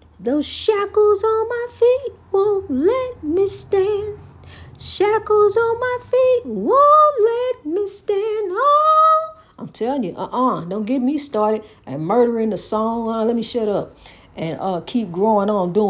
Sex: female